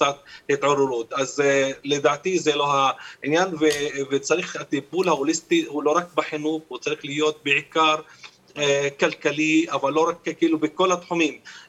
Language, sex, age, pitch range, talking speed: Hebrew, male, 40-59, 145-170 Hz, 140 wpm